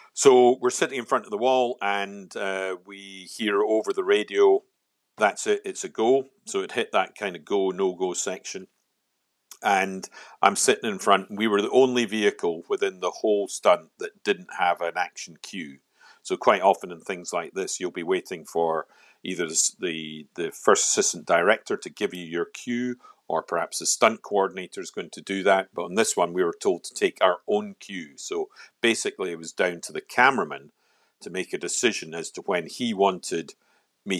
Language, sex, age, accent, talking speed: English, male, 50-69, British, 200 wpm